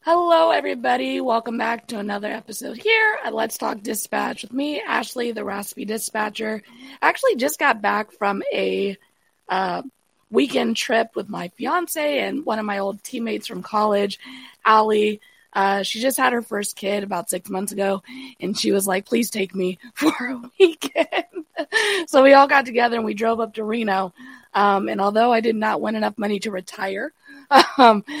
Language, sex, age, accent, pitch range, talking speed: English, female, 20-39, American, 205-265 Hz, 180 wpm